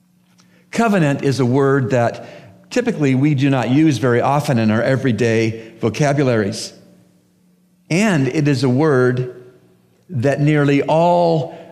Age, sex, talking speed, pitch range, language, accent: 50-69, male, 125 wpm, 110-160 Hz, English, American